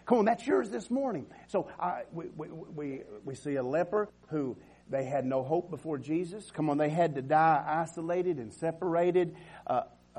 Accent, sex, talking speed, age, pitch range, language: American, male, 170 wpm, 50-69, 90-150 Hz, English